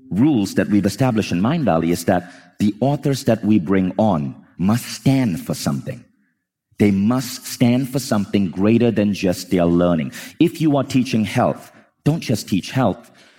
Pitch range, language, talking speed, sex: 95-130 Hz, English, 170 wpm, male